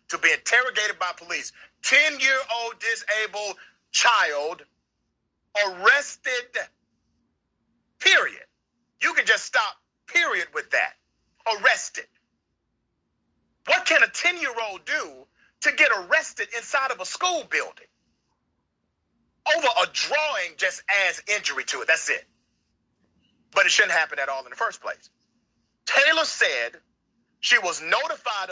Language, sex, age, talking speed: English, male, 40-59, 120 wpm